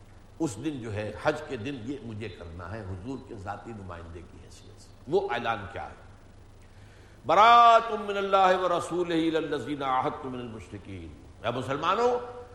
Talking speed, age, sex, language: 135 wpm, 60-79, male, Urdu